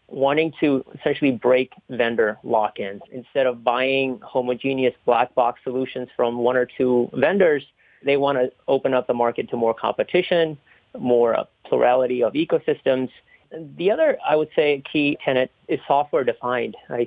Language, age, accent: English, 40-59, American